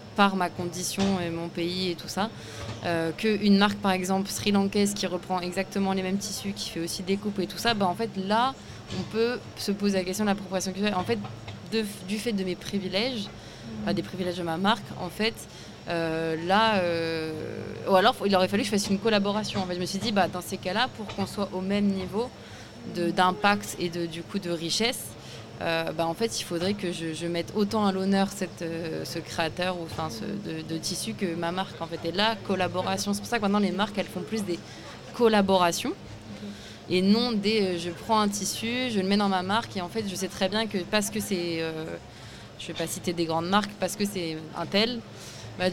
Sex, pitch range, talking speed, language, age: female, 170-205 Hz, 230 wpm, French, 20-39